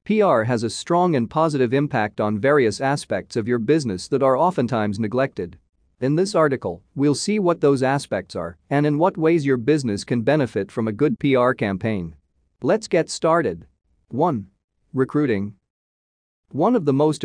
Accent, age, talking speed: American, 40-59, 165 wpm